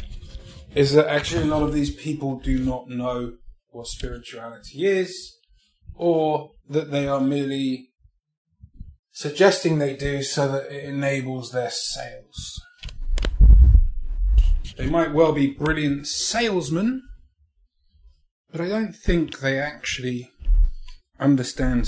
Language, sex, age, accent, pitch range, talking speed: English, male, 30-49, British, 125-180 Hz, 110 wpm